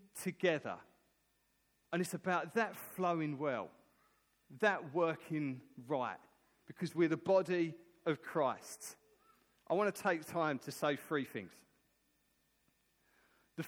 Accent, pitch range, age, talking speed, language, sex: British, 155-215 Hz, 40-59, 115 wpm, English, male